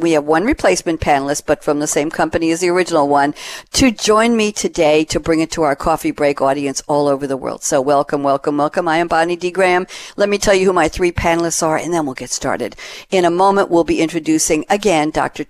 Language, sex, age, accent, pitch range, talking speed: English, female, 60-79, American, 150-190 Hz, 235 wpm